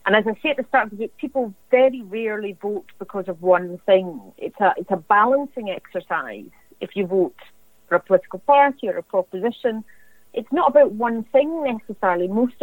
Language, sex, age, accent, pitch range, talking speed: English, female, 40-59, British, 185-245 Hz, 195 wpm